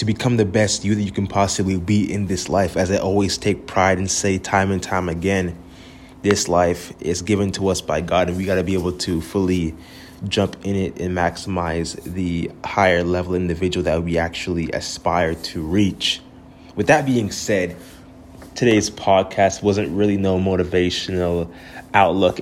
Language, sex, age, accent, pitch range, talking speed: English, male, 20-39, American, 90-105 Hz, 175 wpm